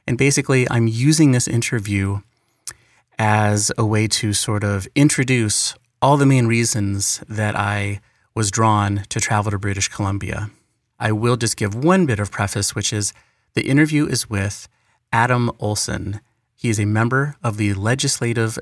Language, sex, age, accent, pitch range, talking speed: English, male, 30-49, American, 105-125 Hz, 160 wpm